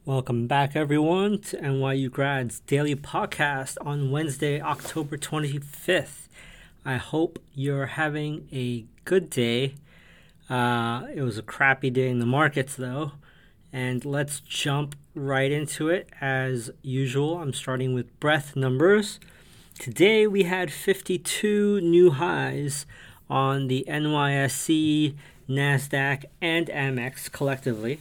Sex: male